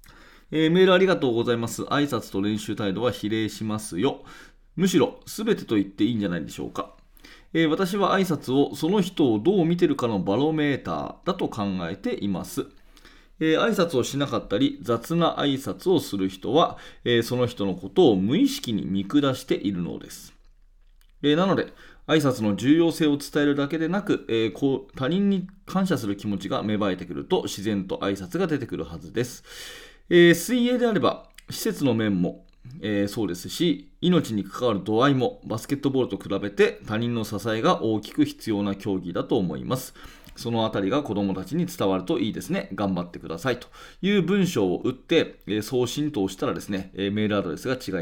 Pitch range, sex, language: 100-160 Hz, male, Japanese